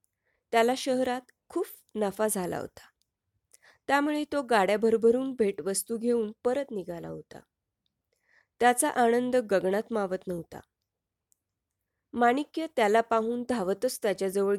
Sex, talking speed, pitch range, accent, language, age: female, 105 wpm, 190-245 Hz, native, Marathi, 20-39